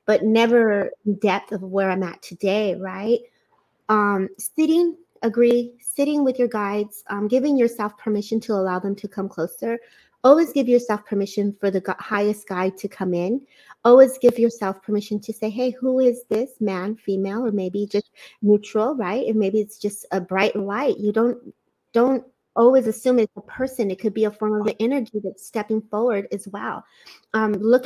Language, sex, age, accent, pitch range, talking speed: English, female, 30-49, American, 200-245 Hz, 185 wpm